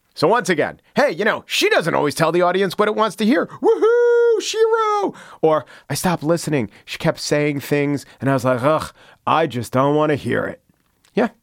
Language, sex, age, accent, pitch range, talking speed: English, male, 40-59, American, 120-160 Hz, 210 wpm